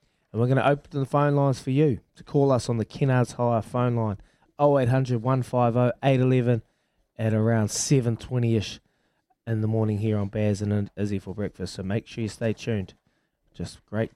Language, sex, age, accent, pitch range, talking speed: English, male, 20-39, Australian, 100-125 Hz, 175 wpm